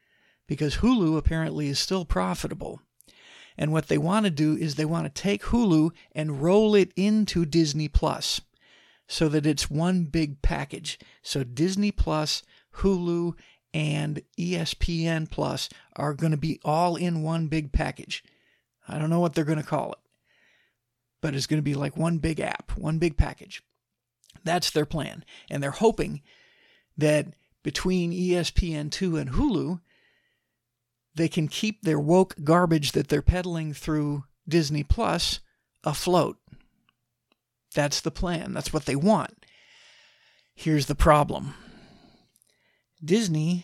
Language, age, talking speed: English, 50-69, 140 wpm